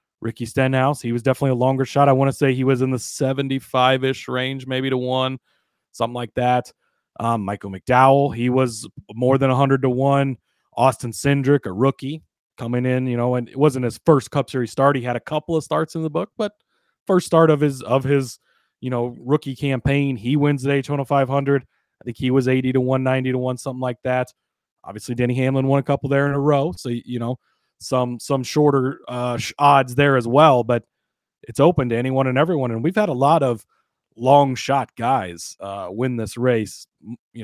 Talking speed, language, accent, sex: 210 wpm, English, American, male